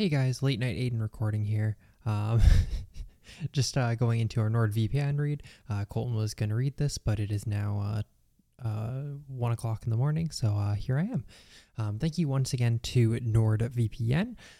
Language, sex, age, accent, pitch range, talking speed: English, male, 20-39, American, 110-130 Hz, 180 wpm